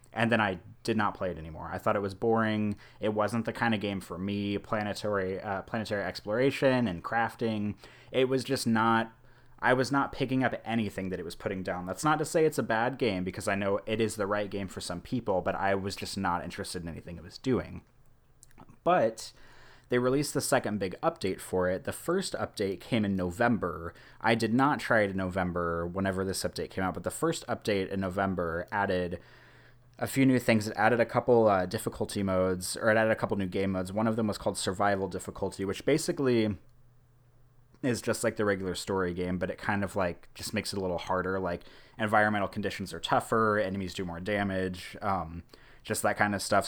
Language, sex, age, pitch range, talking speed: English, male, 30-49, 95-120 Hz, 215 wpm